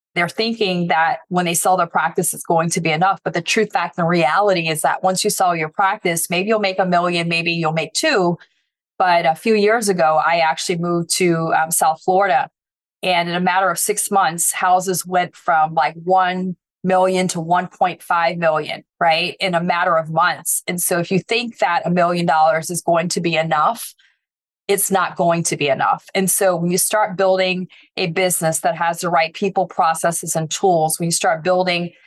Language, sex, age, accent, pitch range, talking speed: English, female, 30-49, American, 165-190 Hz, 205 wpm